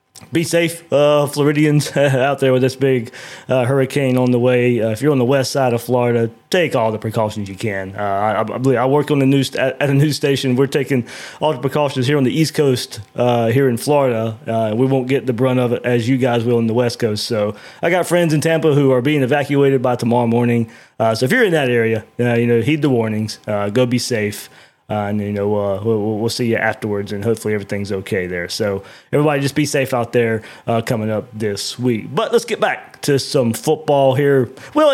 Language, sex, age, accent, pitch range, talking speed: English, male, 20-39, American, 115-150 Hz, 235 wpm